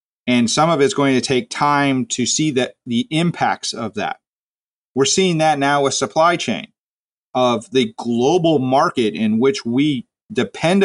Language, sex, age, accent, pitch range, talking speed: English, male, 40-59, American, 120-145 Hz, 165 wpm